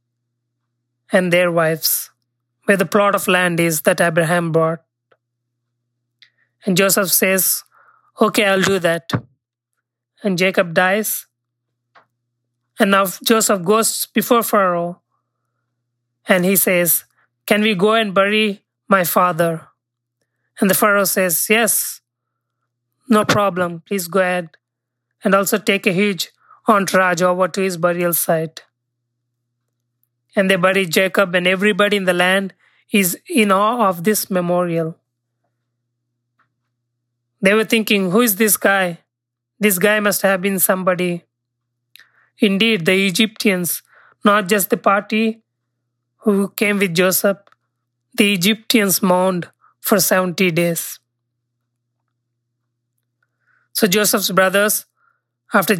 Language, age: English, 20-39